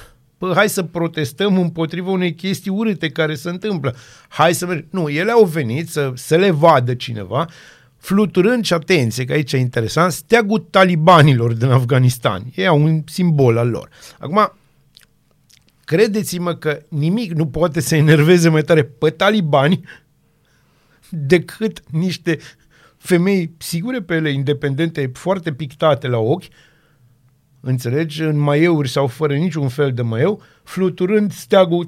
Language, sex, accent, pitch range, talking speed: Romanian, male, native, 140-180 Hz, 135 wpm